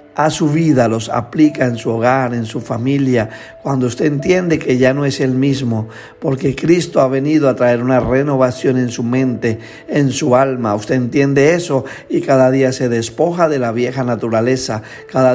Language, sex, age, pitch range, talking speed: Spanish, male, 50-69, 125-145 Hz, 185 wpm